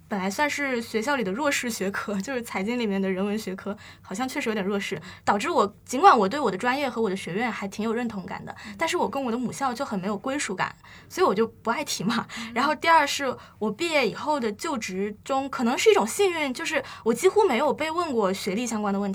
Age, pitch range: 10-29, 205-290 Hz